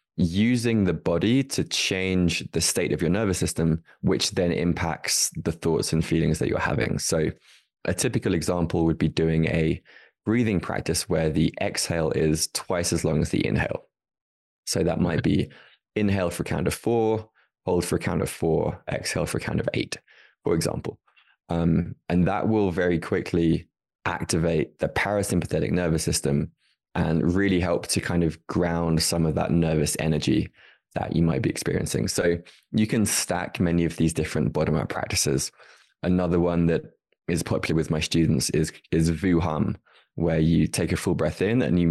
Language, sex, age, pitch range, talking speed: English, male, 20-39, 80-95 Hz, 180 wpm